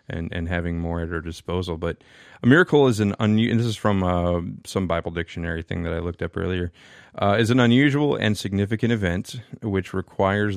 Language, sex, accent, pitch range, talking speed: English, male, American, 90-110 Hz, 205 wpm